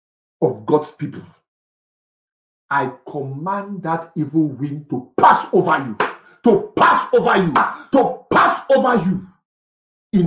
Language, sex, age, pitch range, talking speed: English, male, 50-69, 180-250 Hz, 125 wpm